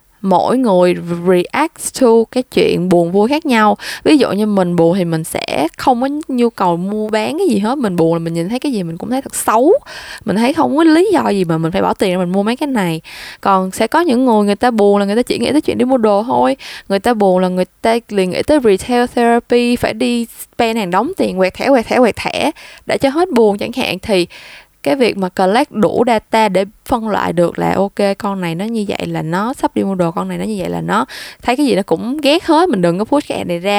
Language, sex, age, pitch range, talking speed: Vietnamese, female, 10-29, 185-245 Hz, 265 wpm